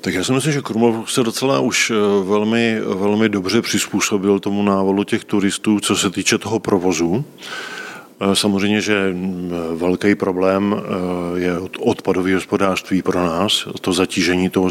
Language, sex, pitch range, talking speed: Czech, male, 95-105 Hz, 140 wpm